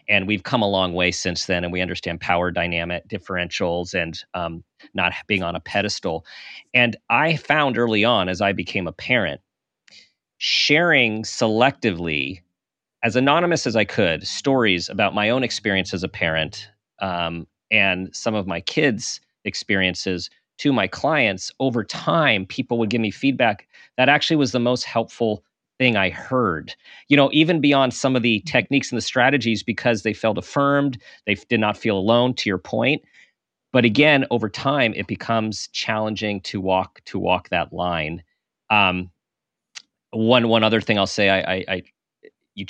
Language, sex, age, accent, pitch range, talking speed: English, male, 40-59, American, 90-120 Hz, 165 wpm